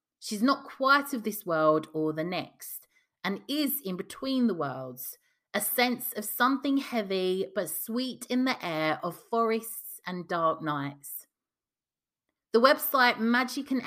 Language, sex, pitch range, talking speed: English, female, 160-245 Hz, 145 wpm